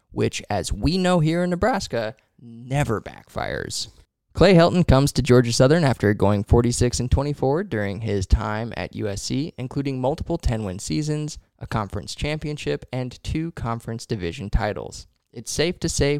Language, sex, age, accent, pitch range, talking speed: English, male, 10-29, American, 110-140 Hz, 150 wpm